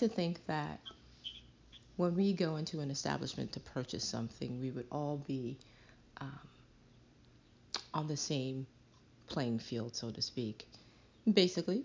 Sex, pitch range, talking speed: female, 120-170 Hz, 130 wpm